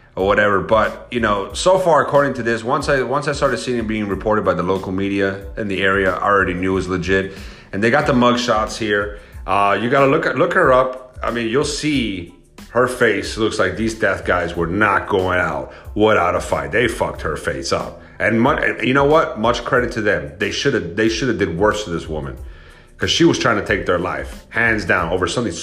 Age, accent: 30-49, American